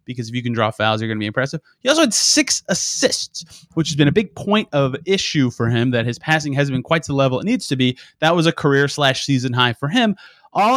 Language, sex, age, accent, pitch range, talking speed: English, male, 30-49, American, 125-165 Hz, 260 wpm